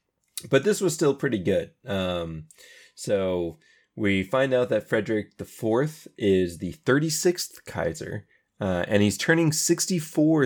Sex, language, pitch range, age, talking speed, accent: male, English, 95-130 Hz, 20-39, 130 wpm, American